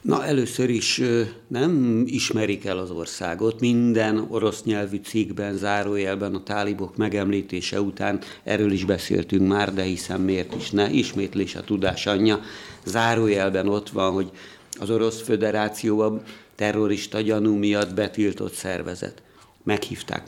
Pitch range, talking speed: 95-110 Hz, 130 wpm